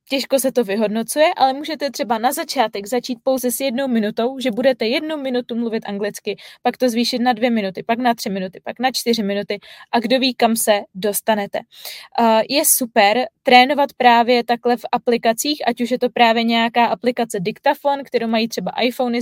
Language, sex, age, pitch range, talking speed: Czech, female, 20-39, 230-255 Hz, 185 wpm